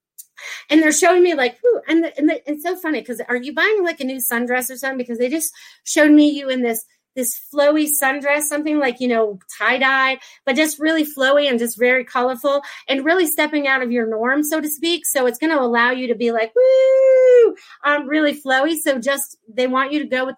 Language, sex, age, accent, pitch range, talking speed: English, female, 30-49, American, 240-300 Hz, 235 wpm